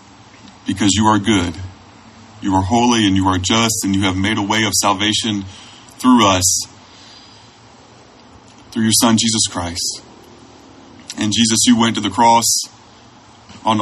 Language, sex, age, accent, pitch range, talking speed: English, male, 30-49, American, 95-110 Hz, 150 wpm